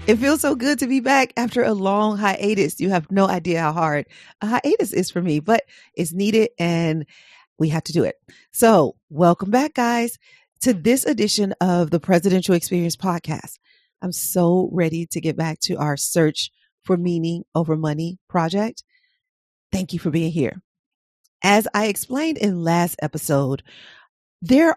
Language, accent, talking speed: English, American, 165 wpm